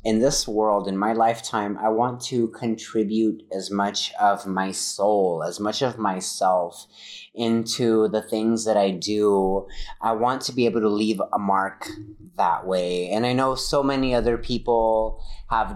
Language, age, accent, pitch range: English, 30-49, American, 105-130 Hz